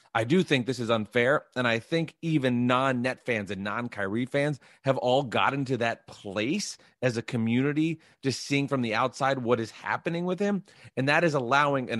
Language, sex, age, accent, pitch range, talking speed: English, male, 30-49, American, 115-155 Hz, 190 wpm